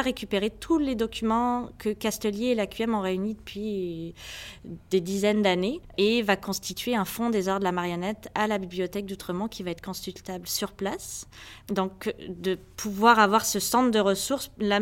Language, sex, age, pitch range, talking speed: French, female, 20-39, 180-225 Hz, 175 wpm